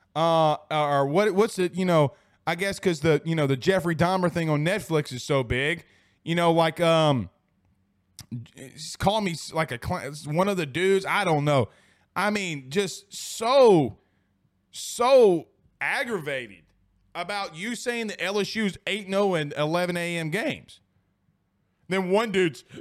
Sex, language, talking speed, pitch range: male, English, 145 wpm, 135-195 Hz